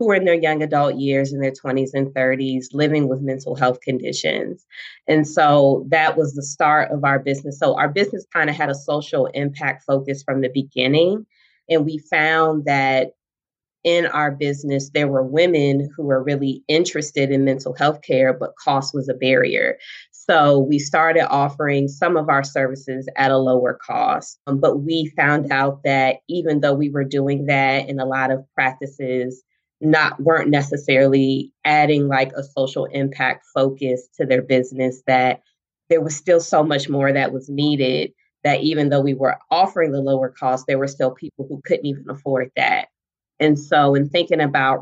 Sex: female